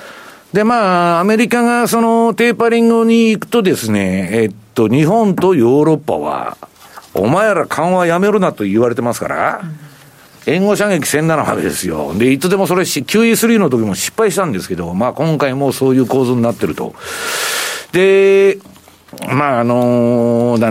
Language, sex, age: Japanese, male, 60-79